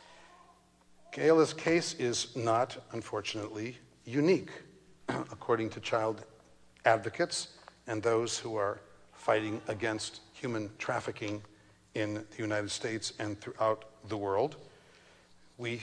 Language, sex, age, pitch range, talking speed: English, male, 60-79, 105-140 Hz, 100 wpm